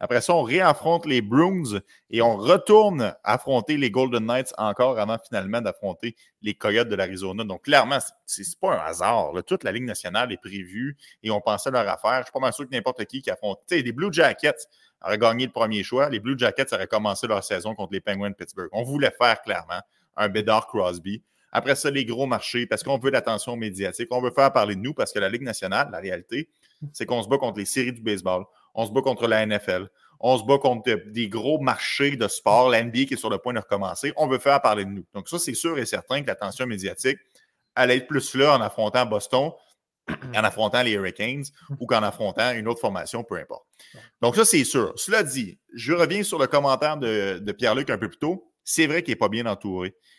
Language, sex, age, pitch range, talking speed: French, male, 30-49, 105-140 Hz, 230 wpm